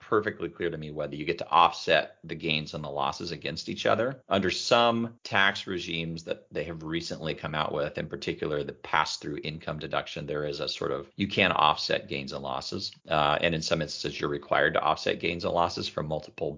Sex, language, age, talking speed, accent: male, English, 40-59, 215 wpm, American